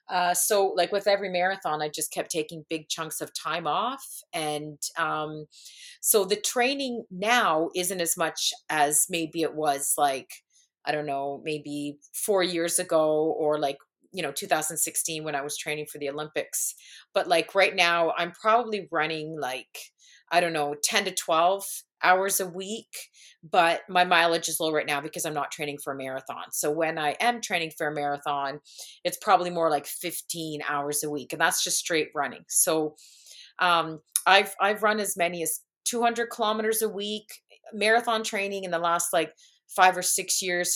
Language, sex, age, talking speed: English, female, 30-49, 180 wpm